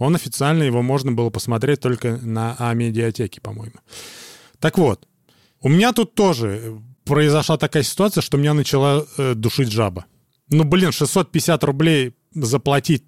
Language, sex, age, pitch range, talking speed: Russian, male, 30-49, 120-160 Hz, 140 wpm